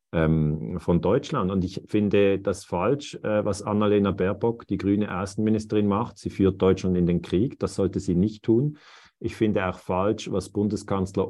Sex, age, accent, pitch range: male, 40-59, German, 95-110 Hz